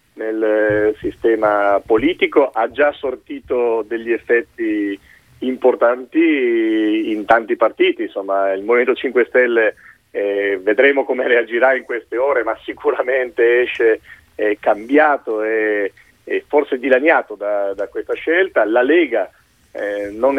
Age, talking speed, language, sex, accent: 40-59, 115 wpm, Italian, male, native